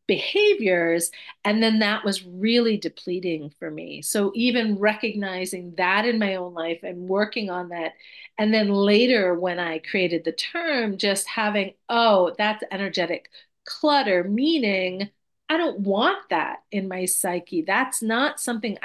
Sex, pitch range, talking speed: female, 185-225 Hz, 145 wpm